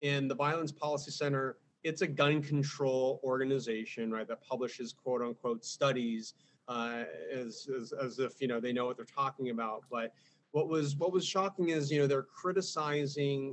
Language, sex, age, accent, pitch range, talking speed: English, male, 30-49, American, 125-150 Hz, 180 wpm